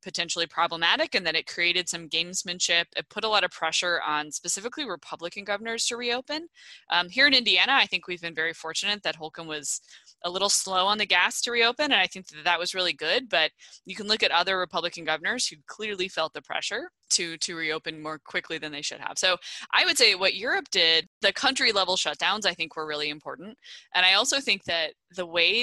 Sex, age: female, 20-39